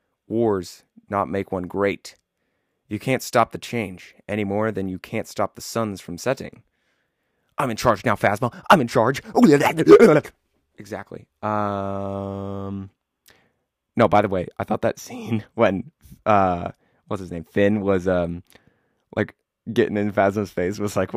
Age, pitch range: 20-39, 95-120 Hz